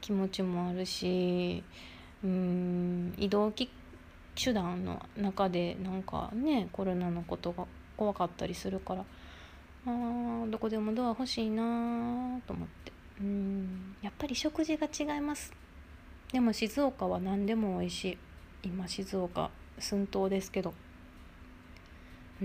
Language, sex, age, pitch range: Japanese, female, 20-39, 180-245 Hz